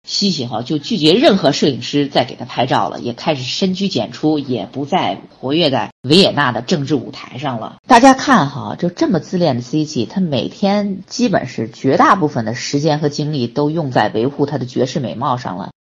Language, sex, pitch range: Chinese, female, 130-195 Hz